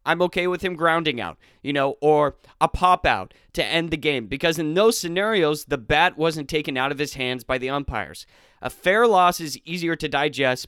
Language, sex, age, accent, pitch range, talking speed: English, male, 20-39, American, 140-180 Hz, 215 wpm